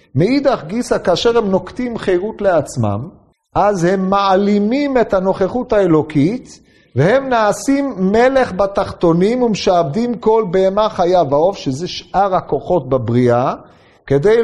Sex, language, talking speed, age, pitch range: male, Hebrew, 110 wpm, 40-59, 155-215 Hz